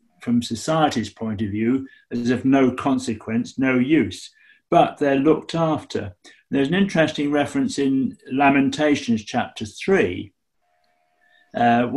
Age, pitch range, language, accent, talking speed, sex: 60-79, 115-150 Hz, English, British, 120 wpm, male